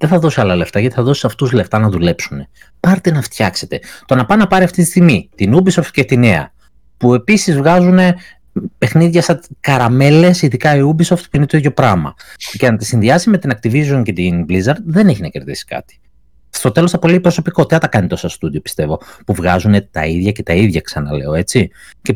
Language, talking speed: Greek, 210 wpm